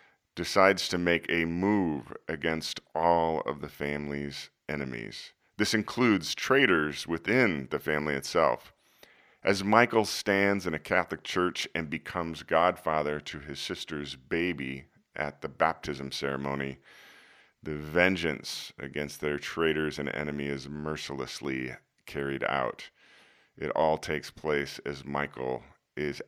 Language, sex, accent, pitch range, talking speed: English, male, American, 70-90 Hz, 125 wpm